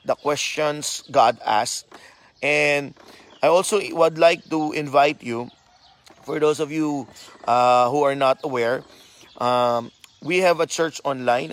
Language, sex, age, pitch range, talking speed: Filipino, male, 20-39, 135-160 Hz, 140 wpm